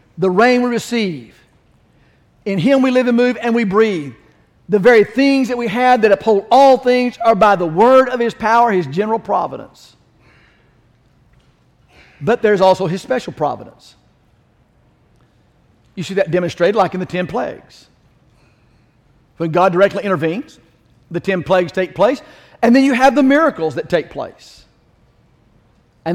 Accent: American